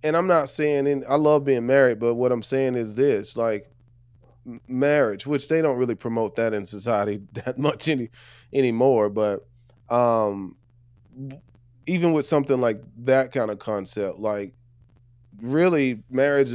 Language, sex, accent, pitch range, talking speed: English, male, American, 115-135 Hz, 150 wpm